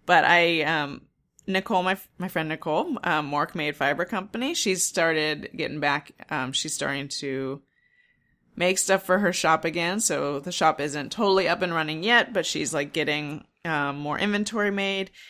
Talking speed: 175 wpm